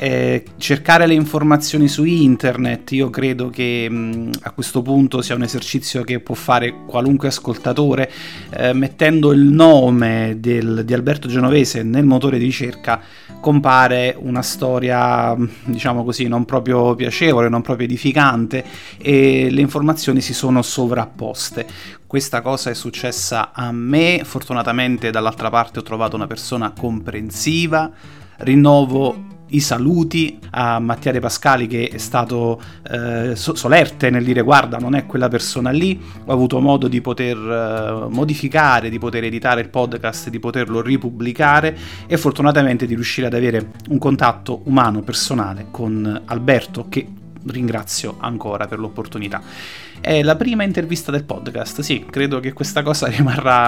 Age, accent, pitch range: 30-49, native, 115-140 Hz